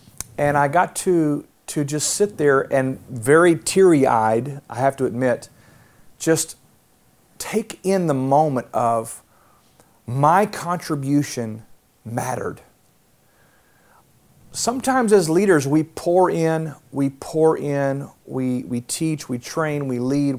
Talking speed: 120 wpm